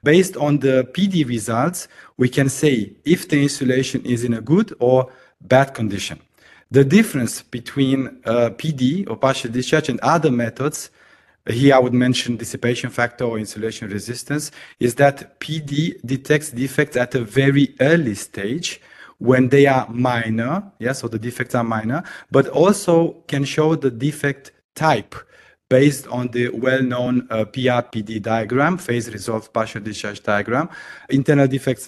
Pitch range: 120-140 Hz